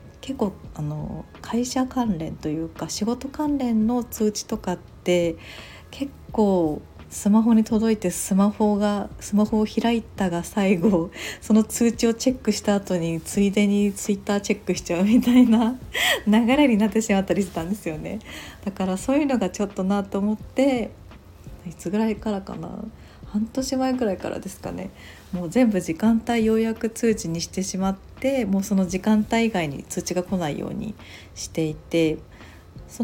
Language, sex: Japanese, female